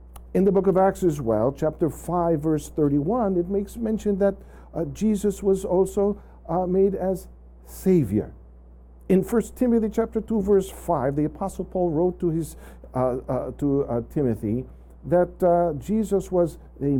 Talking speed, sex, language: 160 wpm, male, Filipino